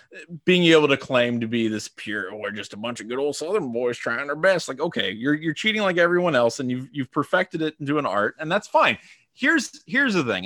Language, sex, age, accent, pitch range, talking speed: English, male, 30-49, American, 115-165 Hz, 245 wpm